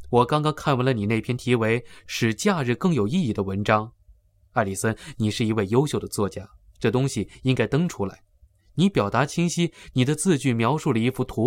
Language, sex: Chinese, male